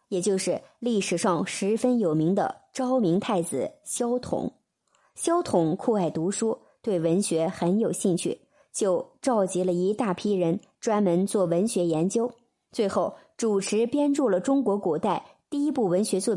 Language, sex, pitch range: Chinese, male, 180-255 Hz